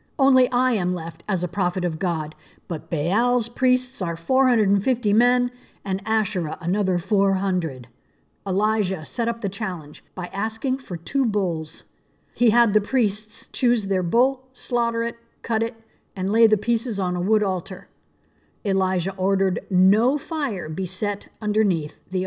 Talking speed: 150 wpm